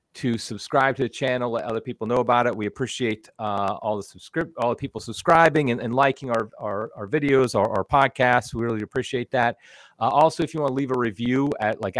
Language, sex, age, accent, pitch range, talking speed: English, male, 40-59, American, 110-135 Hz, 230 wpm